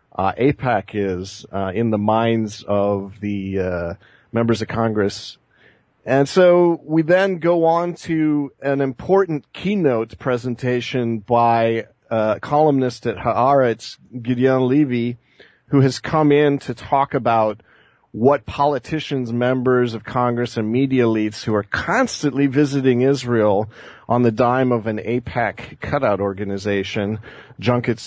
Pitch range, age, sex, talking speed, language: 110-140 Hz, 40-59, male, 130 wpm, English